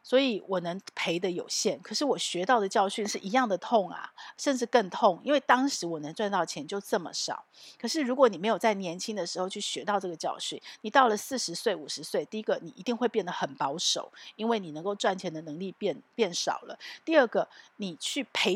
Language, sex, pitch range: Chinese, female, 180-240 Hz